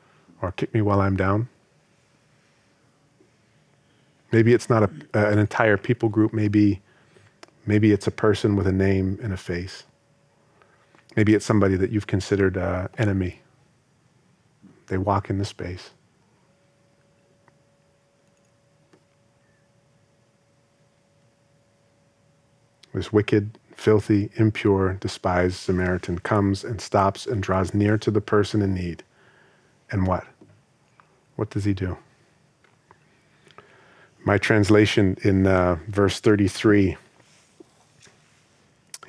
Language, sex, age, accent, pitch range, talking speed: English, male, 40-59, American, 95-110 Hz, 105 wpm